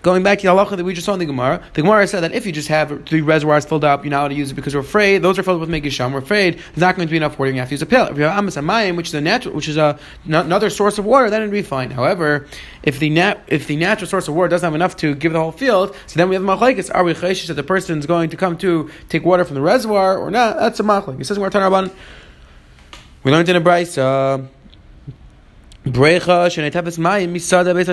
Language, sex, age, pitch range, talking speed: English, male, 30-49, 150-190 Hz, 270 wpm